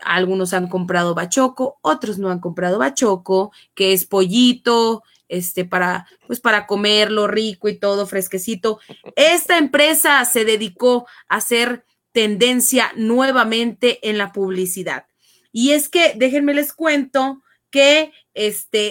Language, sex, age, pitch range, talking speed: English, female, 30-49, 210-275 Hz, 125 wpm